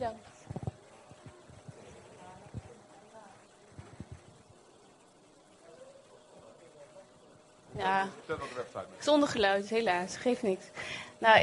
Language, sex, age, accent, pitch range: Dutch, female, 30-49, Dutch, 210-245 Hz